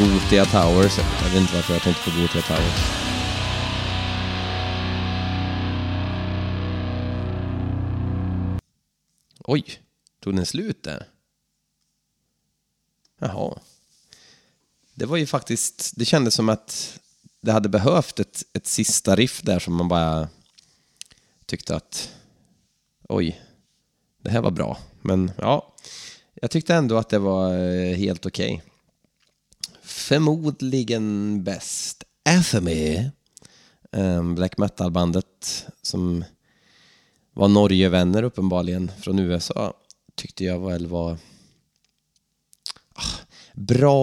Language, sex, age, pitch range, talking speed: Swedish, male, 30-49, 90-115 Hz, 95 wpm